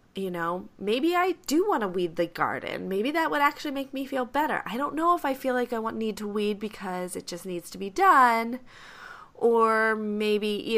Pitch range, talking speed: 180-255 Hz, 215 wpm